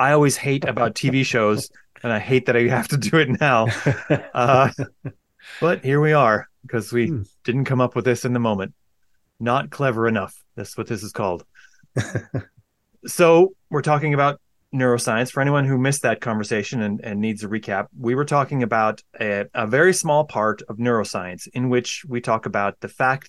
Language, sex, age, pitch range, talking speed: English, male, 30-49, 110-140 Hz, 190 wpm